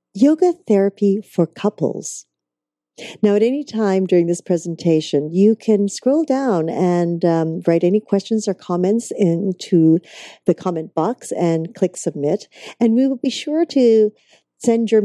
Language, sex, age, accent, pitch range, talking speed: English, female, 50-69, American, 170-215 Hz, 150 wpm